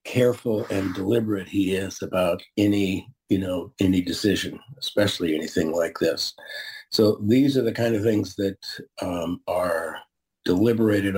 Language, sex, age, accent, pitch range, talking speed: English, male, 50-69, American, 95-110 Hz, 140 wpm